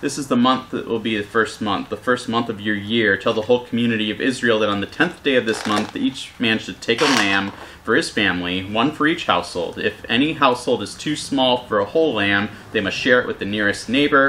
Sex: male